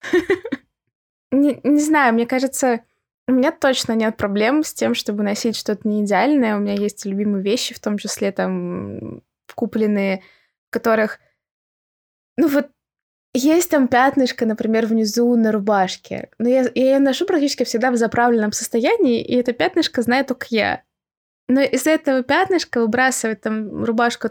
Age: 20-39